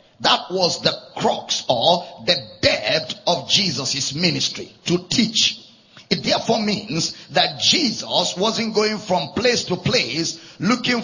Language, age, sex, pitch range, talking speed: English, 50-69, male, 175-230 Hz, 130 wpm